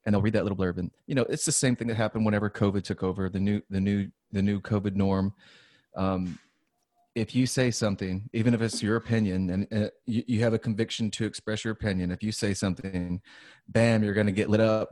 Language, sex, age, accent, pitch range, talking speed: English, male, 30-49, American, 100-115 Hz, 235 wpm